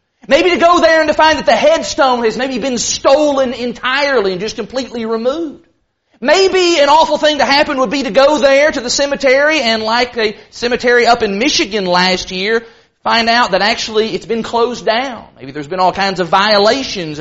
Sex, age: male, 30-49